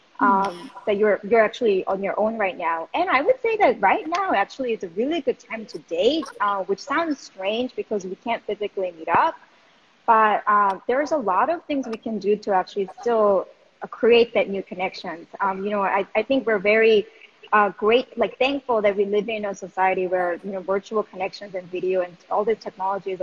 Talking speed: 215 wpm